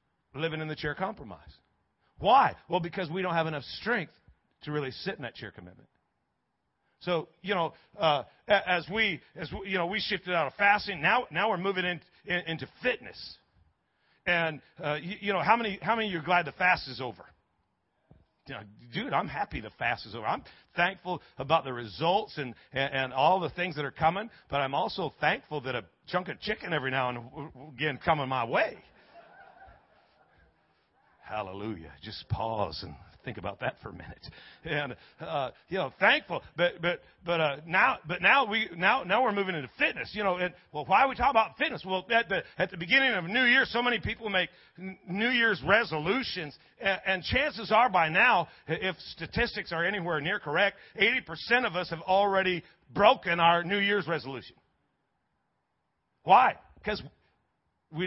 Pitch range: 150-195 Hz